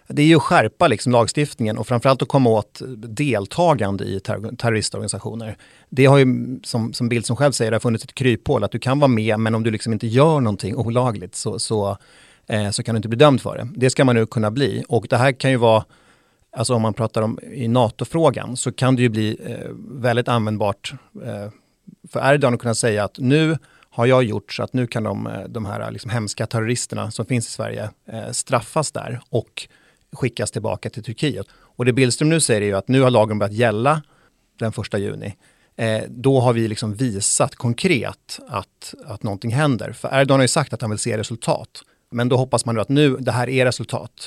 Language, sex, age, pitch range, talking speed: Swedish, male, 30-49, 110-130 Hz, 220 wpm